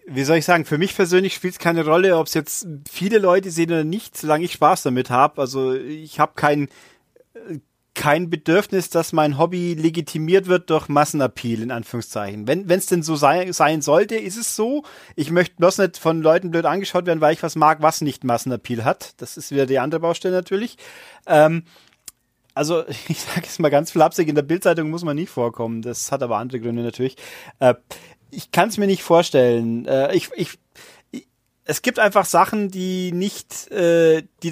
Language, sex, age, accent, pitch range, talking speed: German, male, 30-49, German, 145-180 Hz, 195 wpm